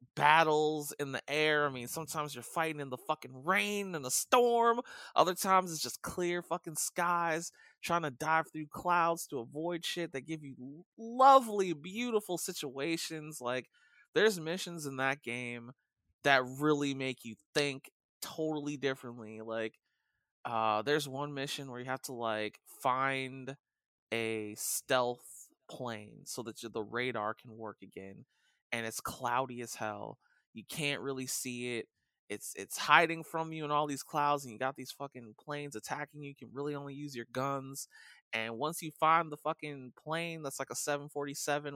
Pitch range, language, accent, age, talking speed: 125-155 Hz, English, American, 30-49, 165 wpm